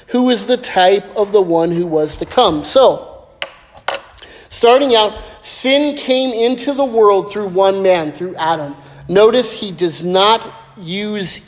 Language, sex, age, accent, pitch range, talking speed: English, male, 40-59, American, 180-220 Hz, 150 wpm